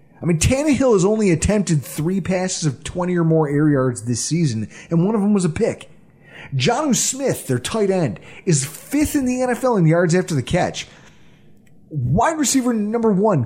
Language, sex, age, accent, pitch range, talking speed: English, male, 30-49, American, 145-200 Hz, 185 wpm